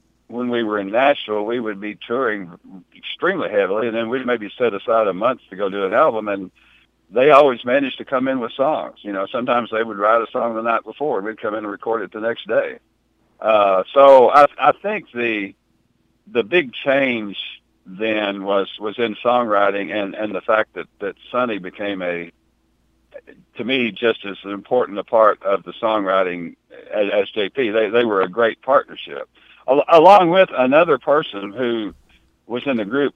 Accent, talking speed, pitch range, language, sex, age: American, 190 wpm, 95-125 Hz, English, male, 60-79